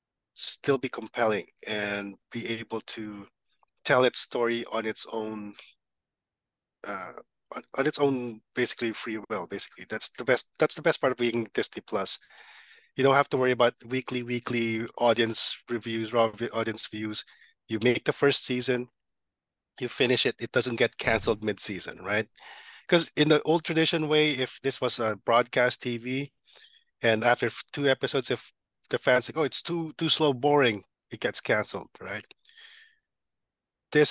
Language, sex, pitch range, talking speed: English, male, 115-140 Hz, 160 wpm